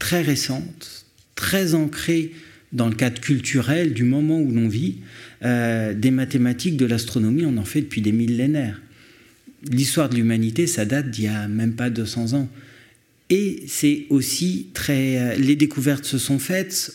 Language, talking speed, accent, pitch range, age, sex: French, 165 wpm, French, 125-160 Hz, 50-69, male